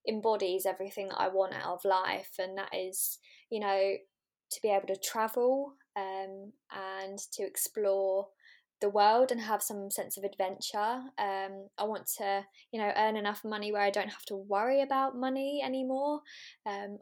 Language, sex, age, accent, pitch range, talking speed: English, female, 10-29, British, 195-255 Hz, 175 wpm